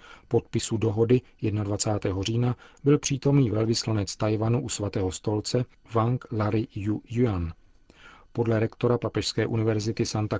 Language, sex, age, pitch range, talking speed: Czech, male, 40-59, 110-125 Hz, 115 wpm